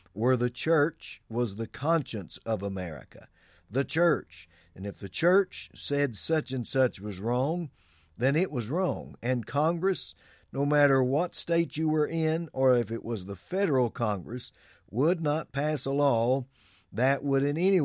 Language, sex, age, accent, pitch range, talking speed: English, male, 50-69, American, 105-140 Hz, 165 wpm